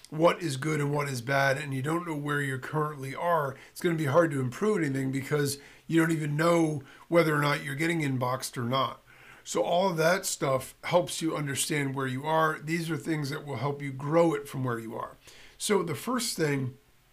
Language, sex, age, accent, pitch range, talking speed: English, male, 40-59, American, 140-165 Hz, 225 wpm